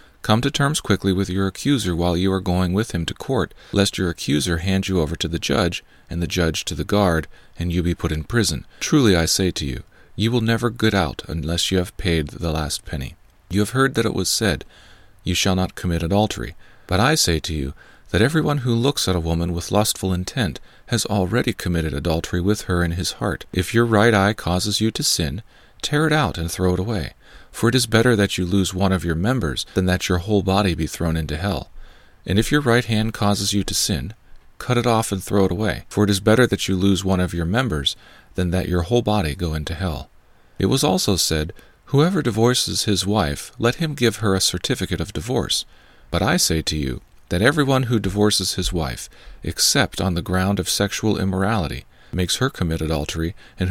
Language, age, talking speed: English, 40-59, 220 wpm